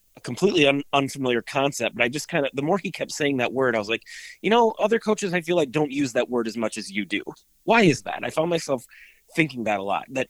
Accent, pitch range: American, 120-140 Hz